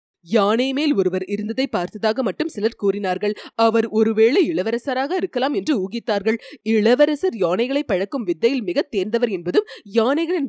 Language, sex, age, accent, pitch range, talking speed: Tamil, female, 30-49, native, 200-280 Hz, 120 wpm